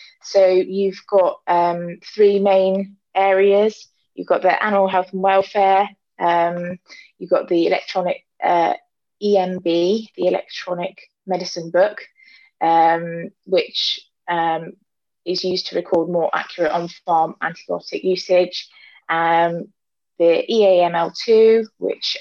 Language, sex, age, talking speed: English, female, 20-39, 110 wpm